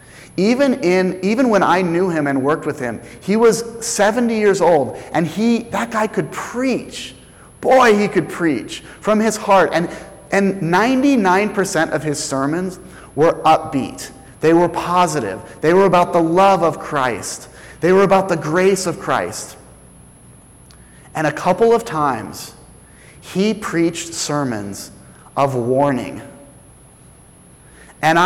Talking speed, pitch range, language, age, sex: 140 wpm, 150-195 Hz, English, 30-49, male